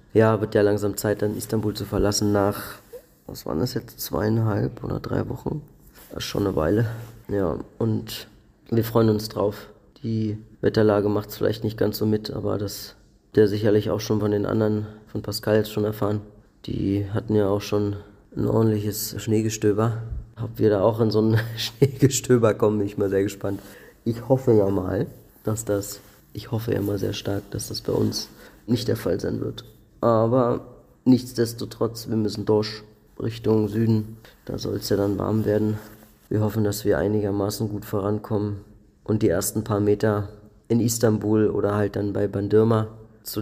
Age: 30-49